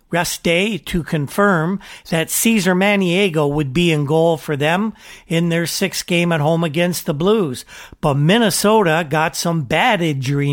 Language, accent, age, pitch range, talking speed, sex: English, American, 50-69, 160-200 Hz, 160 wpm, male